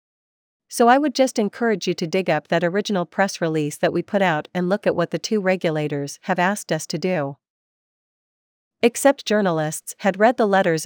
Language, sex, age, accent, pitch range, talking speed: English, female, 40-59, American, 160-200 Hz, 195 wpm